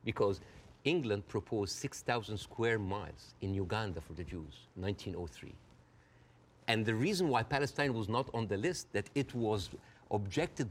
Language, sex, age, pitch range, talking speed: English, male, 50-69, 95-120 Hz, 145 wpm